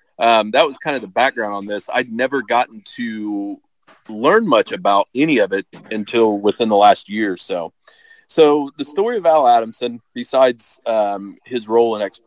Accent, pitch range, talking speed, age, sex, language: American, 105-125 Hz, 180 wpm, 30-49, male, English